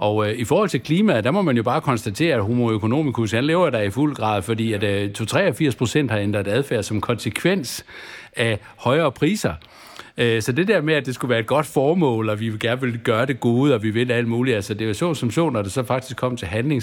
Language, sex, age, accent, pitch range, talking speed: Danish, male, 60-79, native, 105-130 Hz, 240 wpm